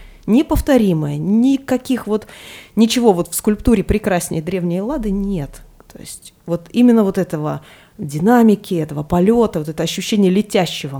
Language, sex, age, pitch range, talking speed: Russian, female, 20-39, 165-210 Hz, 130 wpm